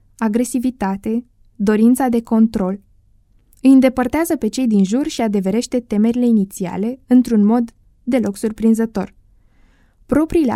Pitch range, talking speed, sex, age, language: 200-255 Hz, 110 wpm, female, 20-39, Romanian